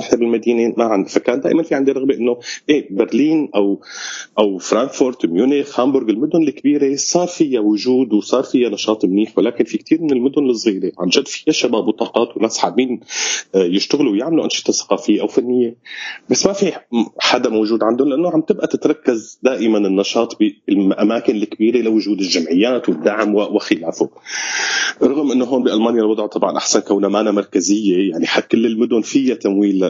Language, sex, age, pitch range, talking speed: Arabic, male, 30-49, 100-125 Hz, 155 wpm